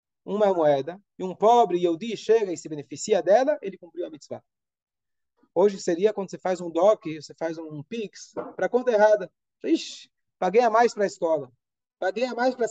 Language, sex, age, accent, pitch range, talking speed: Portuguese, male, 20-39, Brazilian, 150-220 Hz, 205 wpm